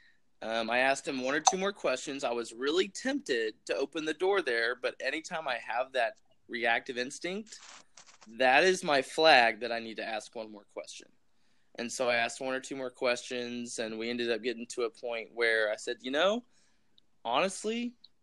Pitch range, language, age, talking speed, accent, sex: 115-145 Hz, English, 20-39, 200 wpm, American, male